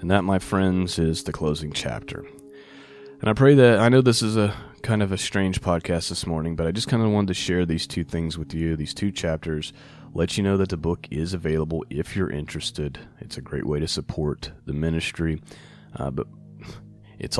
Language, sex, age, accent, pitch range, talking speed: English, male, 30-49, American, 75-100 Hz, 215 wpm